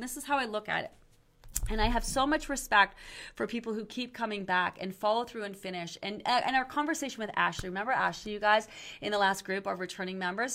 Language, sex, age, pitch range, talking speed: English, female, 30-49, 195-260 Hz, 235 wpm